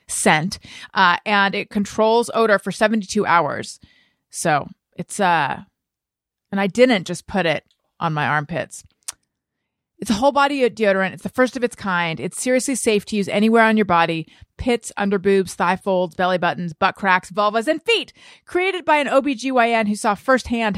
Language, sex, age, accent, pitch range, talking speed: English, female, 30-49, American, 200-255 Hz, 175 wpm